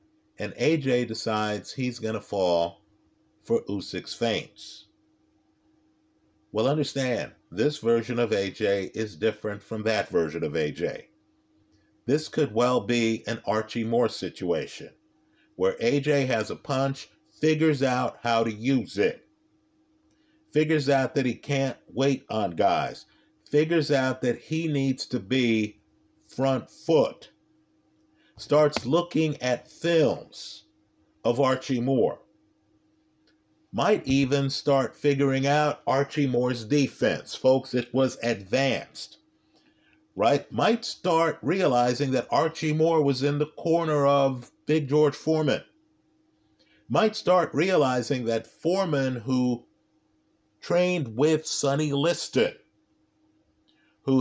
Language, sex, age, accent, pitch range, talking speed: English, male, 50-69, American, 115-155 Hz, 115 wpm